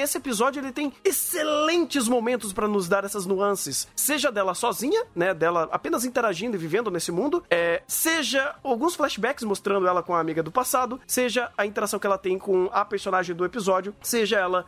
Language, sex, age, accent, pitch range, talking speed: Portuguese, male, 30-49, Brazilian, 200-285 Hz, 185 wpm